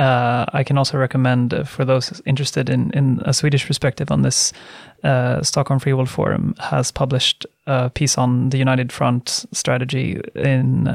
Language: Swedish